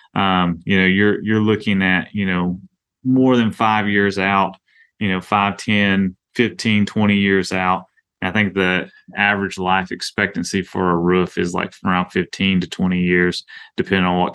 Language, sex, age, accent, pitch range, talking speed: English, male, 30-49, American, 95-105 Hz, 170 wpm